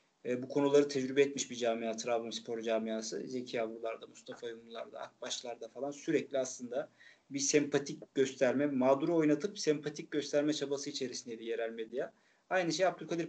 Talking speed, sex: 145 wpm, male